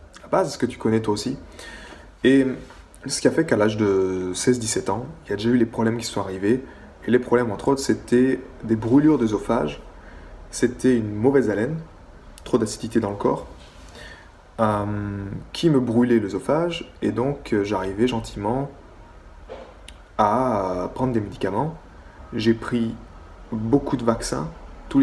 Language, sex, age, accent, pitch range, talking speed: French, male, 20-39, French, 95-120 Hz, 150 wpm